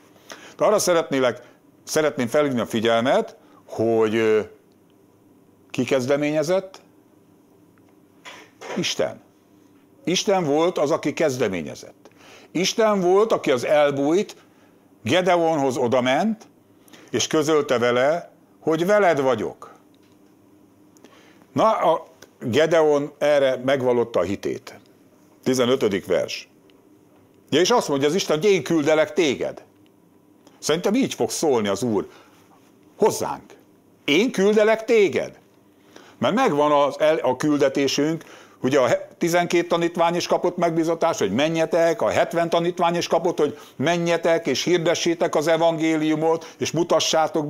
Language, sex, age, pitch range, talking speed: English, male, 60-79, 145-175 Hz, 105 wpm